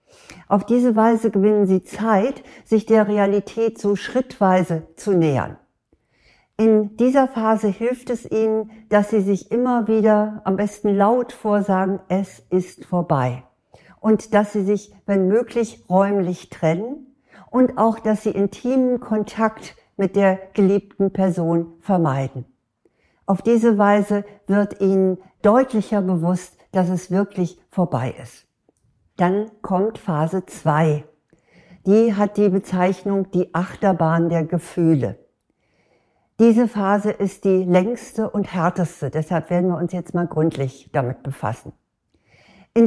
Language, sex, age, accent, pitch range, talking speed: German, female, 60-79, German, 180-215 Hz, 125 wpm